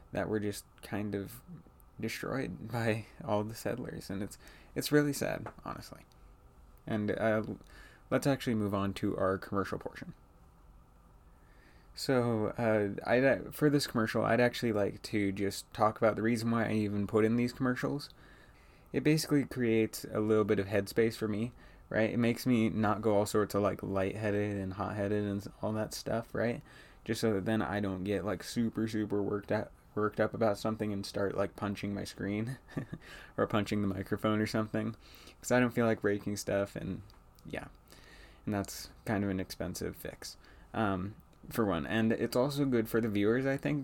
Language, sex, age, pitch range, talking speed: English, male, 20-39, 100-115 Hz, 180 wpm